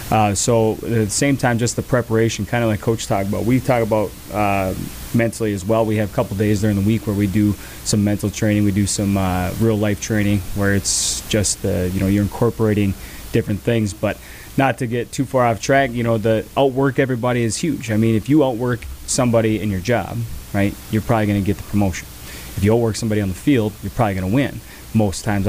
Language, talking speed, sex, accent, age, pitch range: English, 235 wpm, male, American, 20-39, 105-120 Hz